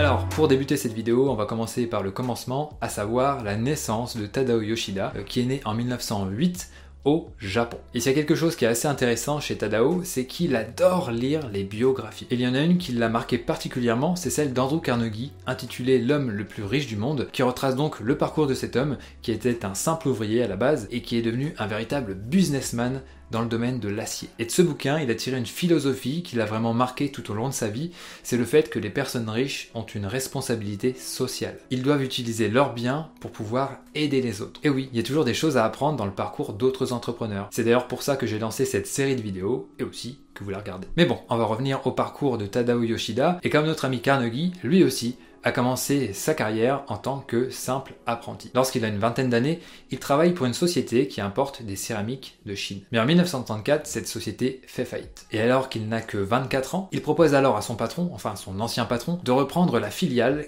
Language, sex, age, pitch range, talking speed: French, male, 20-39, 115-140 Hz, 230 wpm